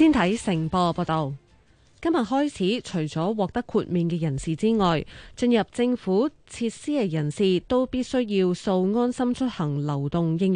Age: 20-39